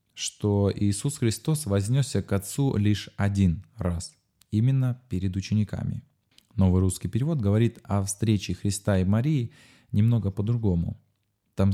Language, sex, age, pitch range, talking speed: Russian, male, 20-39, 95-120 Hz, 125 wpm